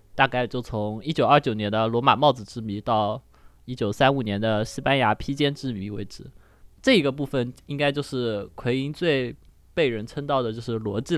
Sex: male